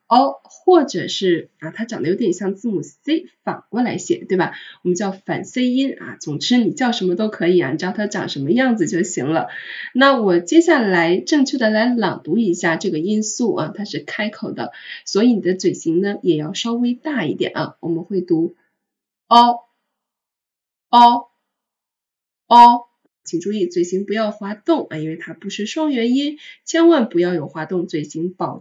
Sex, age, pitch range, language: female, 20-39, 180-250 Hz, Chinese